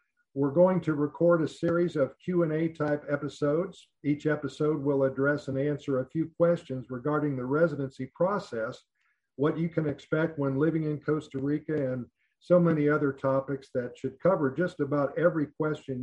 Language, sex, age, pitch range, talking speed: English, male, 50-69, 130-155 Hz, 165 wpm